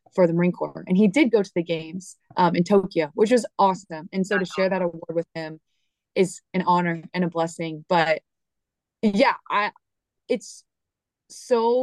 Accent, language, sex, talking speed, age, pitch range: American, English, female, 185 wpm, 20-39, 175-230 Hz